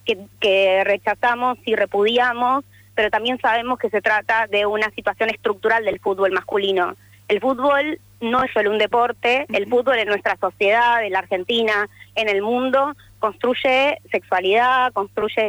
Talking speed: 150 wpm